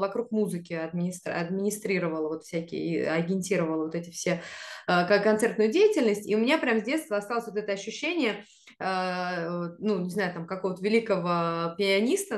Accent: native